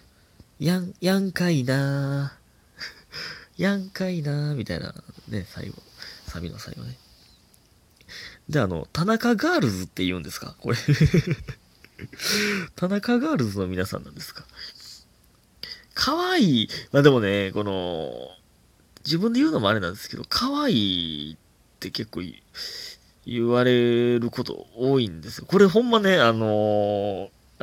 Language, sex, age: Japanese, male, 30-49